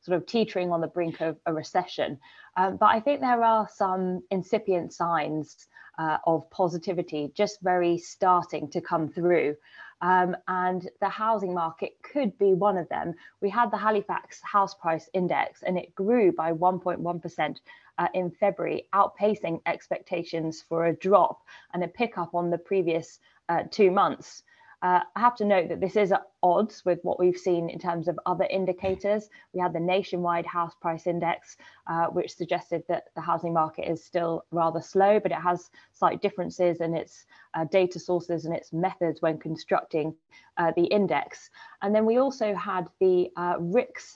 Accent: British